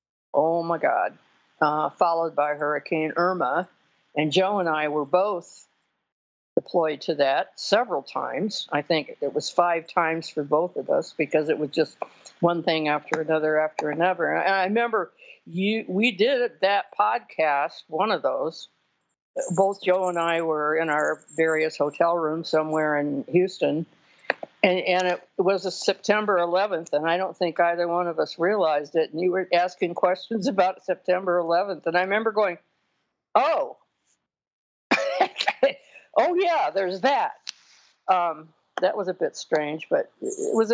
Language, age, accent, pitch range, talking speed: English, 60-79, American, 155-195 Hz, 155 wpm